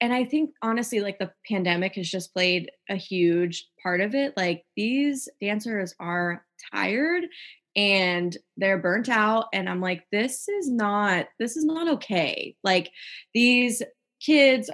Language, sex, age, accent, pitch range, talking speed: English, female, 20-39, American, 175-225 Hz, 150 wpm